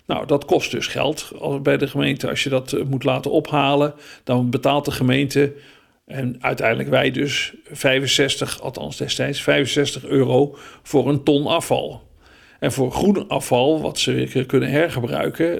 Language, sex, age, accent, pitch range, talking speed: Dutch, male, 50-69, Dutch, 130-155 Hz, 160 wpm